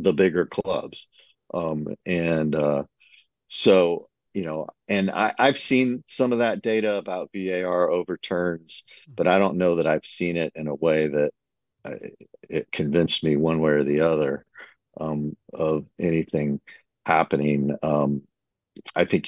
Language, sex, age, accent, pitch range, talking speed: English, male, 50-69, American, 75-95 Hz, 145 wpm